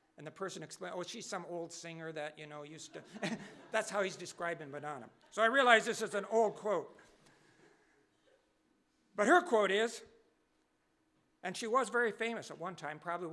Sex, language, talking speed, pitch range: male, English, 180 wpm, 175-235 Hz